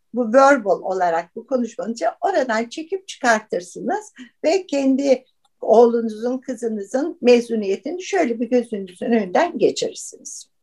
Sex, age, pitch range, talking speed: female, 60-79, 195-275 Hz, 100 wpm